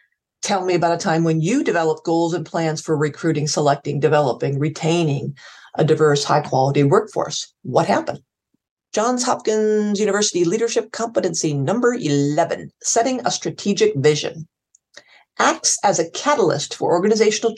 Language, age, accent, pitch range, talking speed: English, 40-59, American, 155-215 Hz, 135 wpm